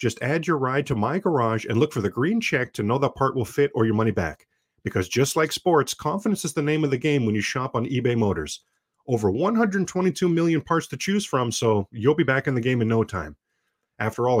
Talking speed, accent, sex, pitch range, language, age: 245 wpm, American, male, 115-150 Hz, English, 40-59